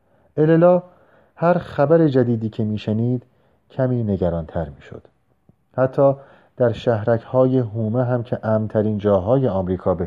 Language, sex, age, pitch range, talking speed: Persian, male, 40-59, 95-120 Hz, 125 wpm